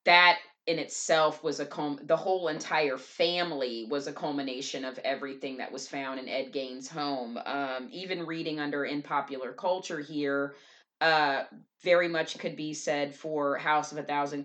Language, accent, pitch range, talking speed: English, American, 140-180 Hz, 165 wpm